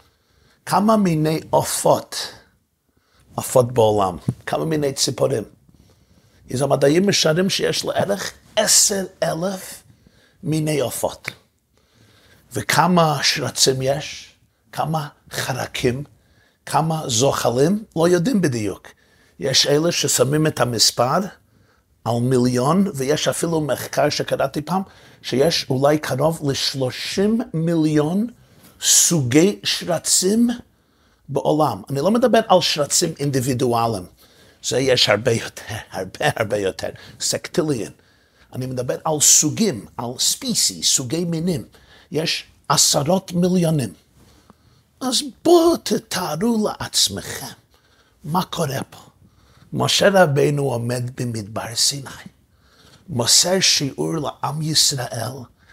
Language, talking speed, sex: Hebrew, 95 wpm, male